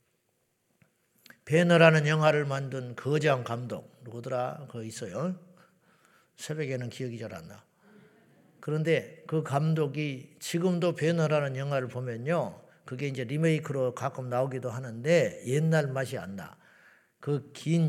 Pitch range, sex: 130-160 Hz, male